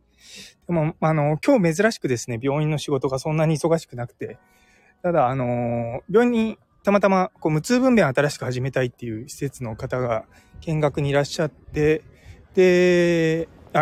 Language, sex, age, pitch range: Japanese, male, 20-39, 115-160 Hz